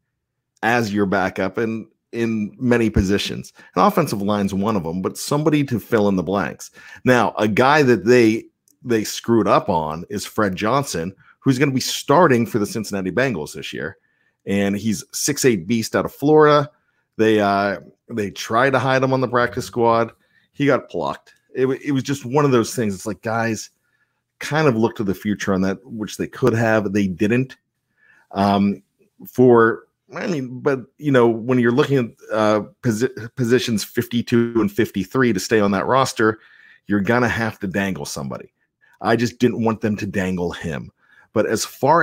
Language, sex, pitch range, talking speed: English, male, 100-125 Hz, 185 wpm